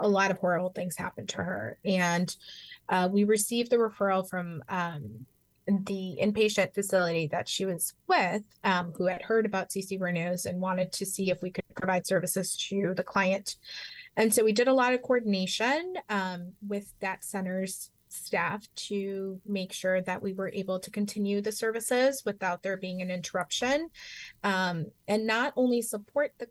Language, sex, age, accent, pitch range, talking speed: English, female, 20-39, American, 180-205 Hz, 175 wpm